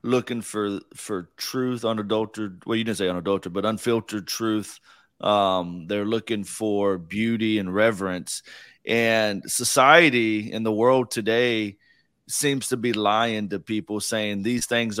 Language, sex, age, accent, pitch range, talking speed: English, male, 30-49, American, 95-115 Hz, 140 wpm